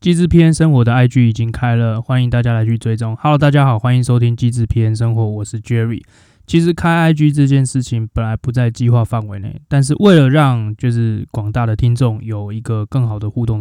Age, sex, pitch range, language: 20-39, male, 115-140 Hz, Chinese